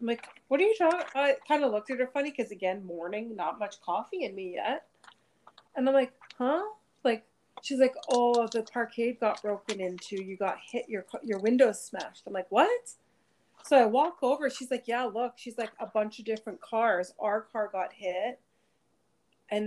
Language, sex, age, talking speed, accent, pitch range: English, female, 30-49, 200 wpm, American, 210-265 Hz